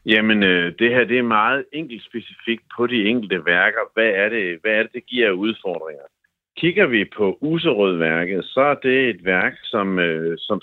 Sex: male